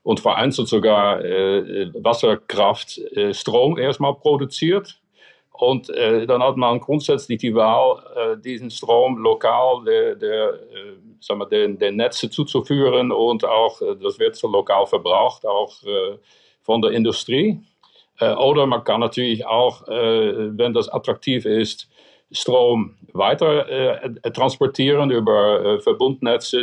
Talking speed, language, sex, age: 135 wpm, German, male, 60-79